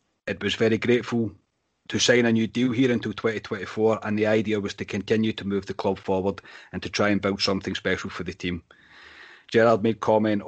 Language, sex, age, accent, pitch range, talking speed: English, male, 30-49, British, 100-115 Hz, 205 wpm